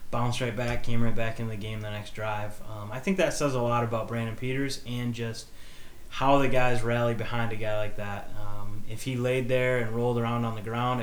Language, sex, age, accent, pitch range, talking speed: English, male, 20-39, American, 105-120 Hz, 240 wpm